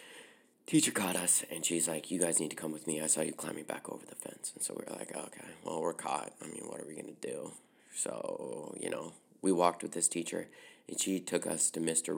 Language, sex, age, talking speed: English, male, 30-49, 255 wpm